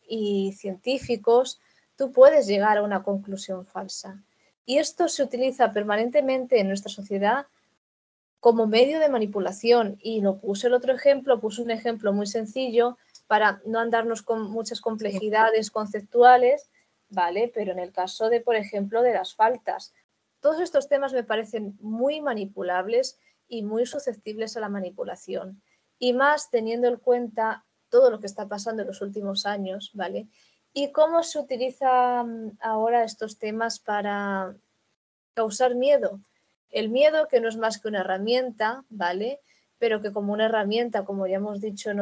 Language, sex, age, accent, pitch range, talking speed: Spanish, female, 20-39, Spanish, 205-250 Hz, 155 wpm